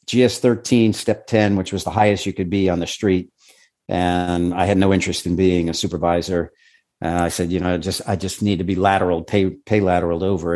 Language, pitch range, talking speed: English, 90-115 Hz, 220 wpm